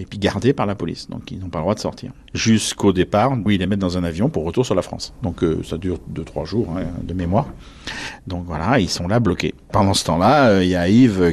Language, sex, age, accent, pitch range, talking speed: French, male, 50-69, French, 90-115 Hz, 270 wpm